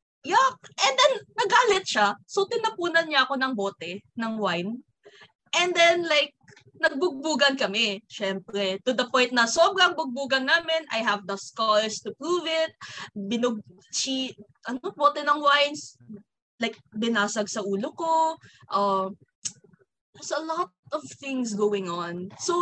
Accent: Filipino